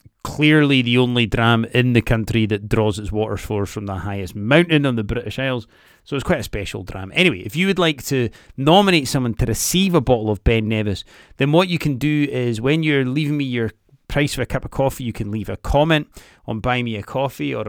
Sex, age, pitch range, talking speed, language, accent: male, 30-49, 115-150 Hz, 235 wpm, English, British